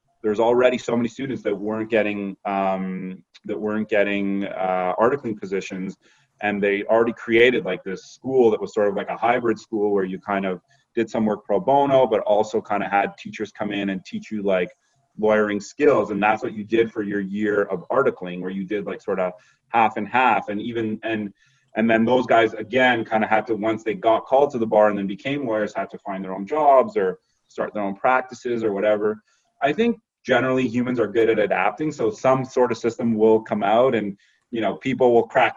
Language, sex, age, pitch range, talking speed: English, male, 30-49, 100-125 Hz, 220 wpm